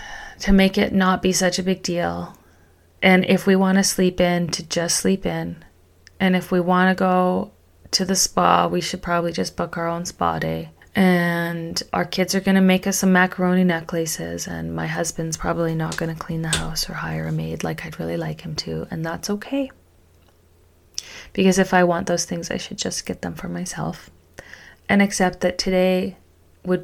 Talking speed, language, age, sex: 195 wpm, English, 30-49, female